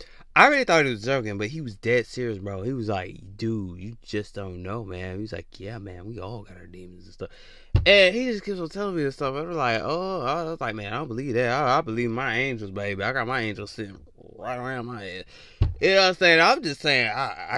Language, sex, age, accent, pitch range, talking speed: English, male, 20-39, American, 100-145 Hz, 265 wpm